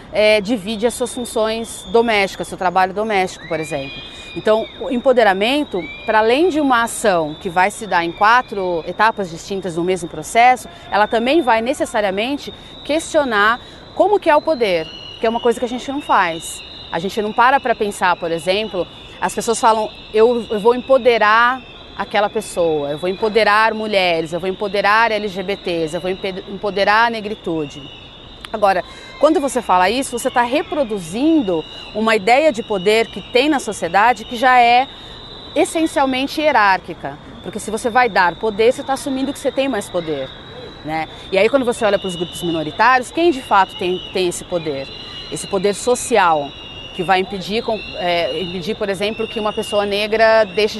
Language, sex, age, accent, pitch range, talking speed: Portuguese, female, 30-49, Brazilian, 185-235 Hz, 170 wpm